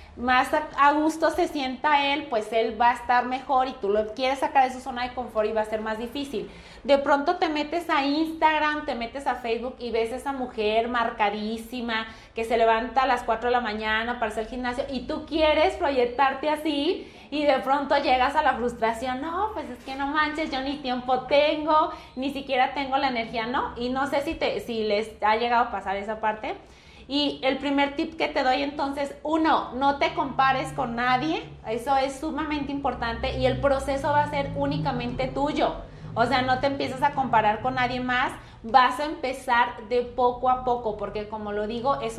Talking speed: 205 wpm